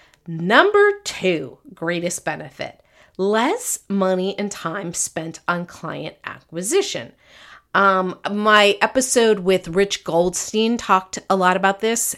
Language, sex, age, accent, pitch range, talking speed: English, female, 40-59, American, 175-215 Hz, 115 wpm